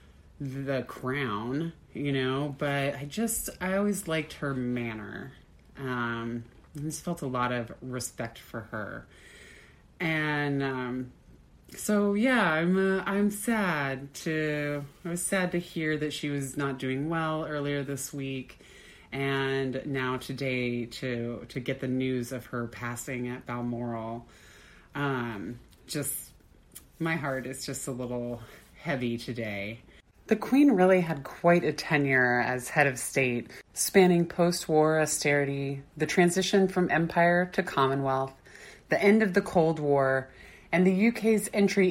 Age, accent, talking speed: 30-49, American, 140 wpm